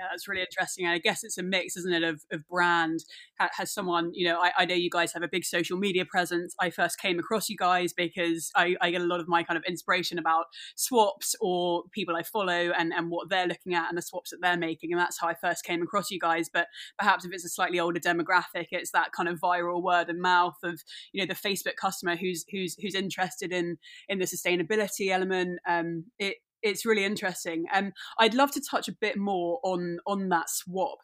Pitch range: 175-200 Hz